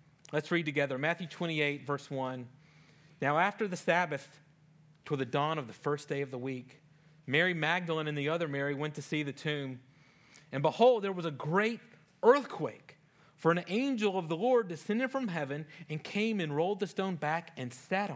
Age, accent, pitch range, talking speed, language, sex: 40-59, American, 145-180 Hz, 190 wpm, English, male